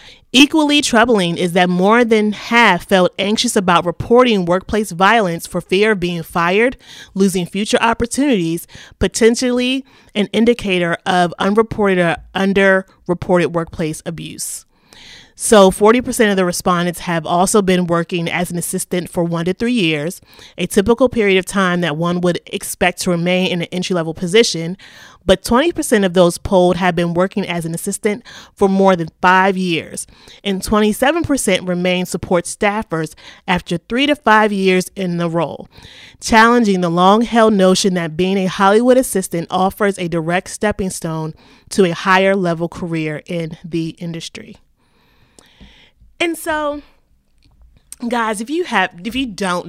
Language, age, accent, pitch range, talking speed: English, 30-49, American, 170-215 Hz, 145 wpm